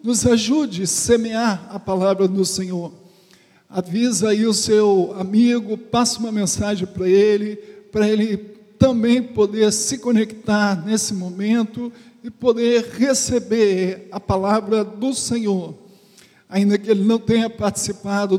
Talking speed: 125 wpm